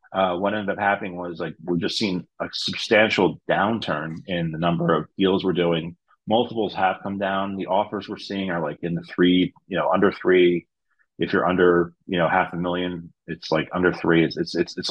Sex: male